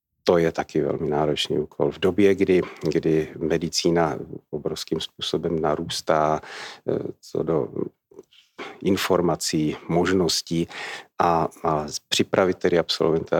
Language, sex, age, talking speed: Czech, male, 40-59, 105 wpm